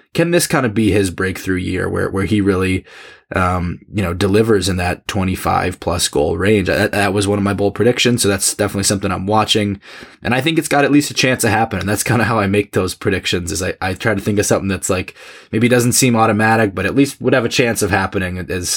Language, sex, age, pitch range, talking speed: English, male, 20-39, 95-115 Hz, 255 wpm